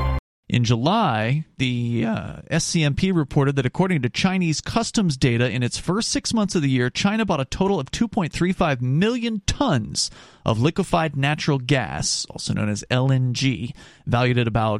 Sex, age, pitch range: male, 40-59, 125-180 Hz